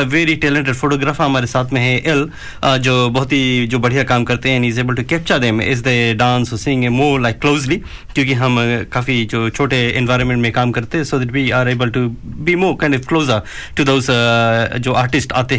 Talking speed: 65 wpm